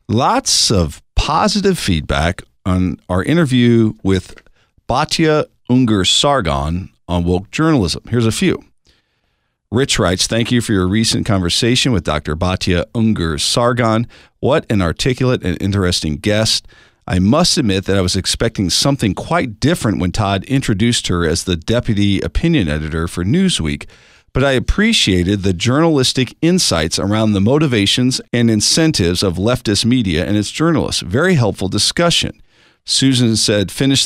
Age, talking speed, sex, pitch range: 50-69, 135 wpm, male, 95-125 Hz